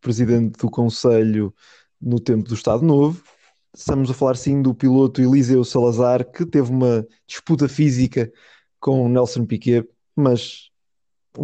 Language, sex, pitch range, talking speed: Portuguese, male, 120-145 Hz, 135 wpm